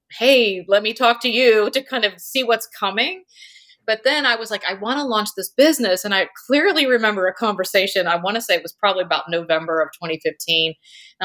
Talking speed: 215 wpm